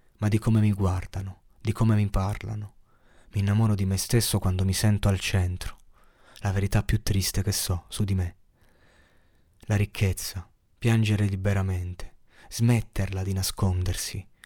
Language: Italian